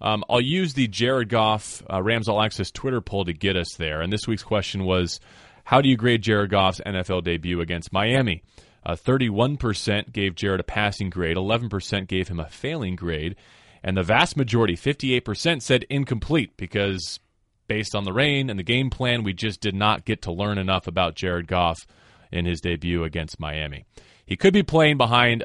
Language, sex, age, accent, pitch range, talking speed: English, male, 30-49, American, 90-115 Hz, 190 wpm